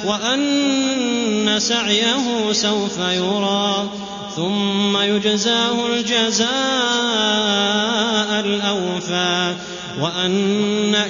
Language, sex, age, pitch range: Arabic, male, 30-49, 200-225 Hz